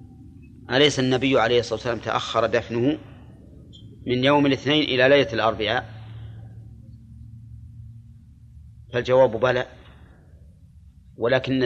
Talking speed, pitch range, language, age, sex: 80 wpm, 95-130 Hz, Arabic, 30-49, male